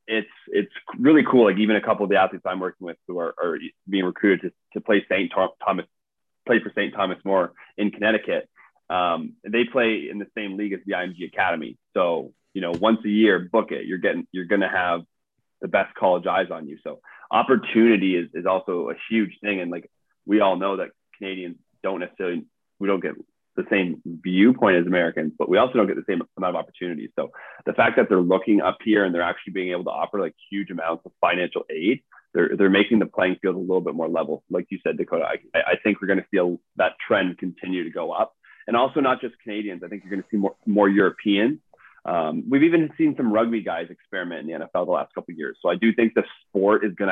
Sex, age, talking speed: male, 30-49, 235 wpm